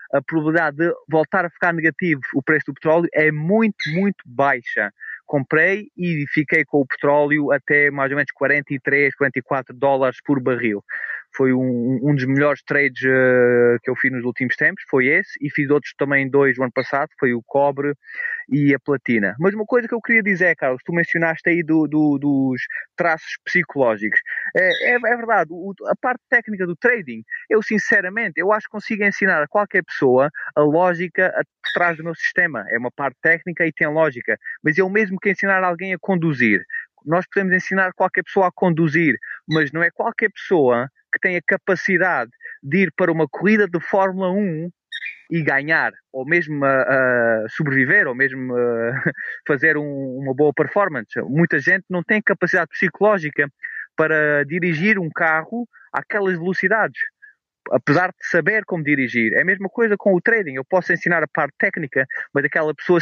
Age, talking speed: 20-39, 175 wpm